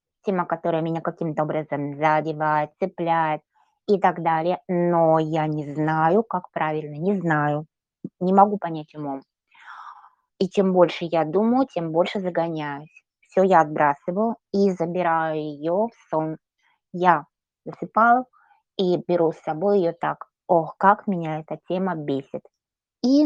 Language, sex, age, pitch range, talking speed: Russian, female, 20-39, 150-185 Hz, 135 wpm